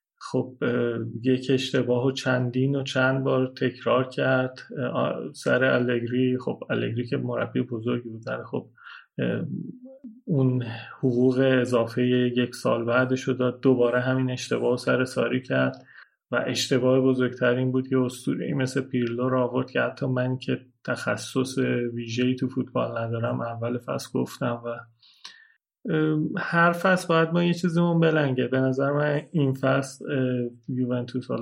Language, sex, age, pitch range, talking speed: Persian, male, 30-49, 125-135 Hz, 130 wpm